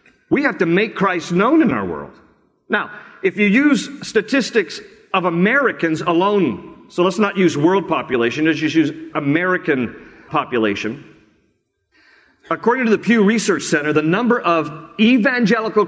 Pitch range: 145-200 Hz